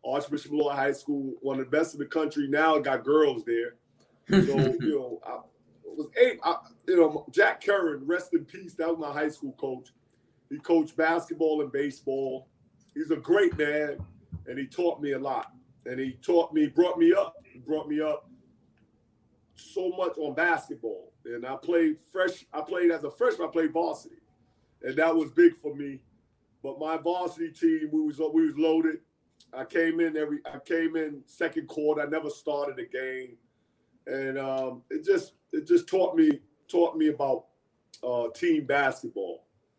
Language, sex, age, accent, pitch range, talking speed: English, male, 40-59, American, 135-185 Hz, 180 wpm